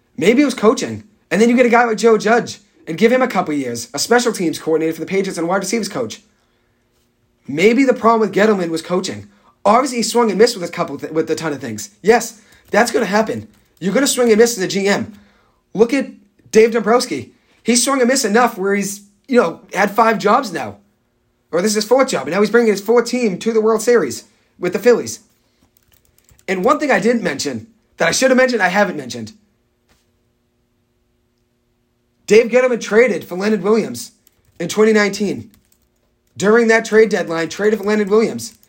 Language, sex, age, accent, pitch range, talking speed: English, male, 30-49, American, 160-225 Hz, 205 wpm